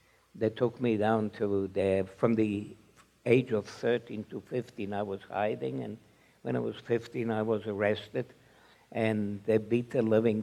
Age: 60-79